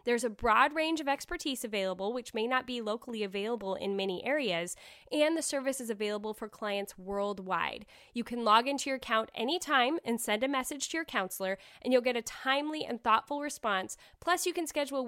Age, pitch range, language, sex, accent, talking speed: 10-29, 210-275 Hz, English, female, American, 200 wpm